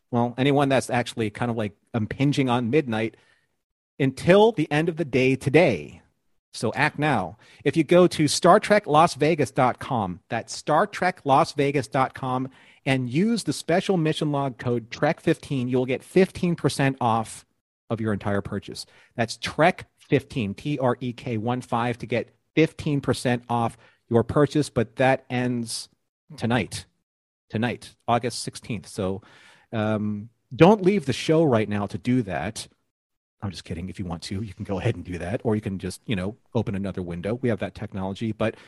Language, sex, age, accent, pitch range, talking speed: English, male, 40-59, American, 115-145 Hz, 155 wpm